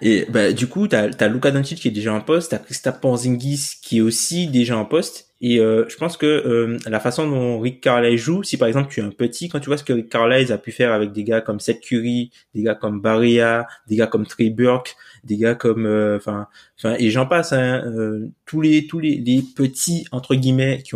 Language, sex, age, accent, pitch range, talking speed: French, male, 20-39, French, 110-140 Hz, 240 wpm